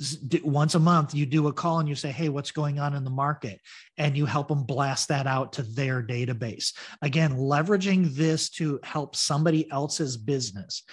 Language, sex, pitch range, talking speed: English, male, 140-160 Hz, 190 wpm